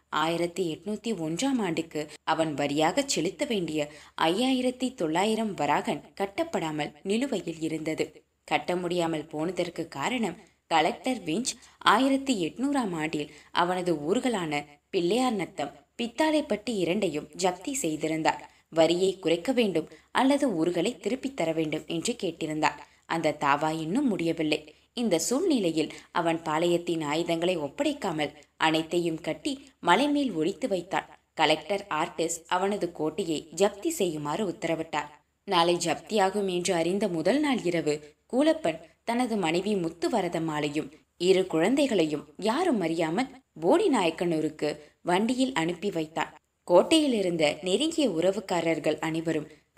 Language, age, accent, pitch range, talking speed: Tamil, 20-39, native, 160-220 Hz, 105 wpm